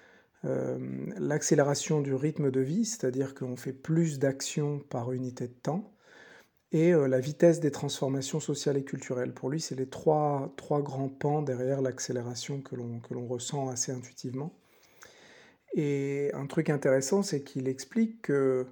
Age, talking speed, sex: 50-69, 155 wpm, male